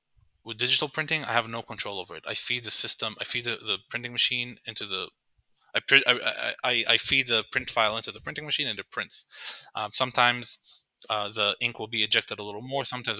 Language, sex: English, male